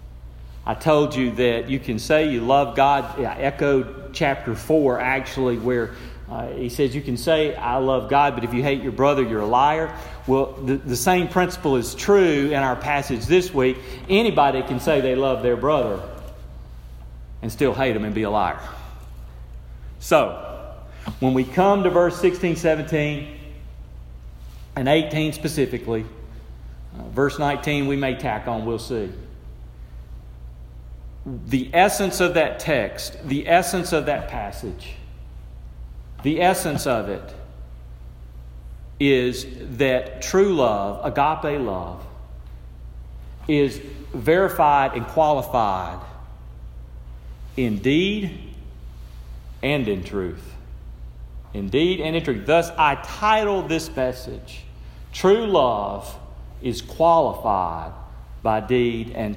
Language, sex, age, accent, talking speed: English, male, 40-59, American, 125 wpm